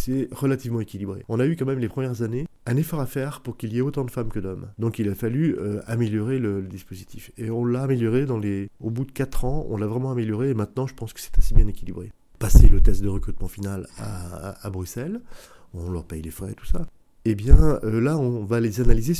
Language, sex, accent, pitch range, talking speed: French, male, French, 100-125 Hz, 255 wpm